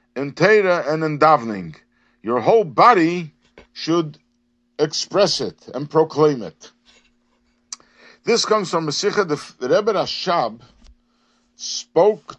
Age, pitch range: 50-69, 120-180 Hz